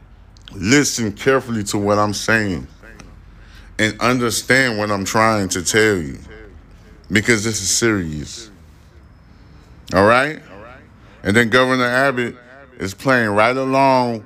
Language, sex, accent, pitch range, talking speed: English, male, American, 90-115 Hz, 120 wpm